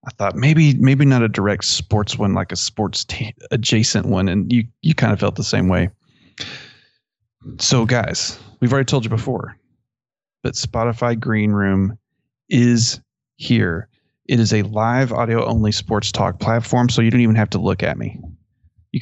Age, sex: 30-49, male